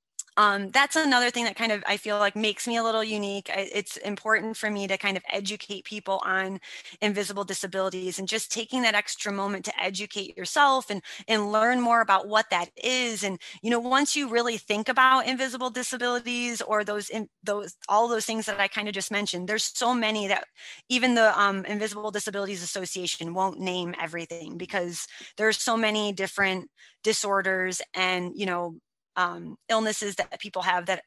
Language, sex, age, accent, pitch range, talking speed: English, female, 20-39, American, 190-235 Hz, 180 wpm